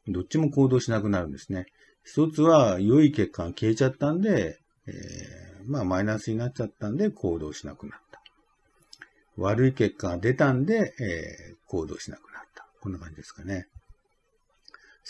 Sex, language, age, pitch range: male, Japanese, 50-69, 95-145 Hz